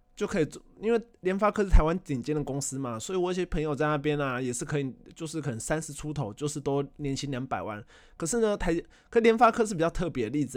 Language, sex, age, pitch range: Chinese, male, 20-39, 130-180 Hz